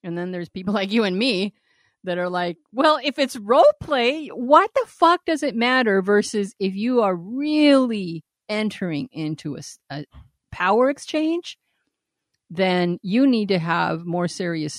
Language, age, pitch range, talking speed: English, 50-69, 165-225 Hz, 160 wpm